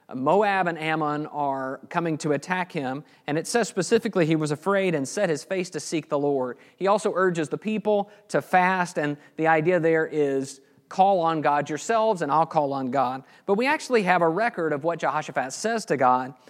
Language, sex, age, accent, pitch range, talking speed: English, male, 40-59, American, 150-195 Hz, 205 wpm